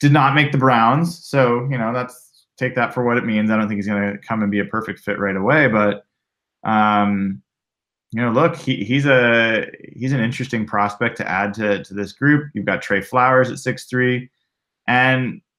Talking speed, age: 210 wpm, 20-39